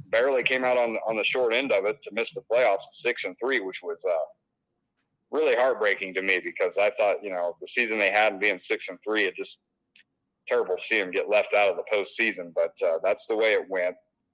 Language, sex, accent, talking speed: English, male, American, 240 wpm